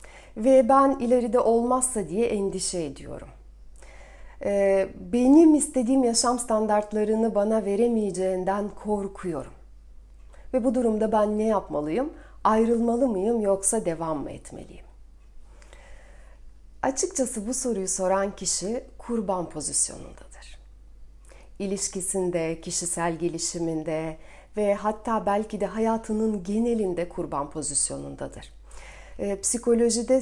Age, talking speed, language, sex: 40-59, 90 wpm, Turkish, female